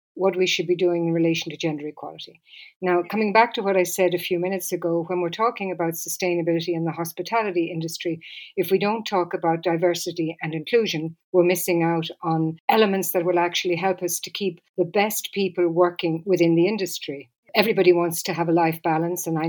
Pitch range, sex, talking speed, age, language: 165-190 Hz, female, 205 wpm, 60-79, English